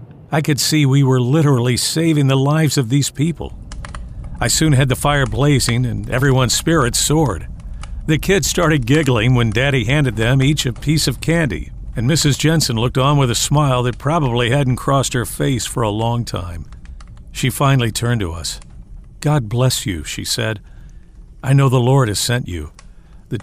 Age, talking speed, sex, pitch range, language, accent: 50-69, 180 wpm, male, 110-140 Hz, English, American